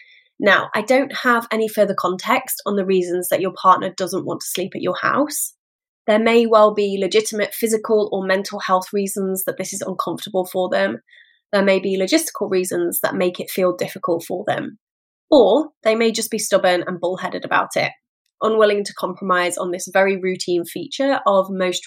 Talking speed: 185 wpm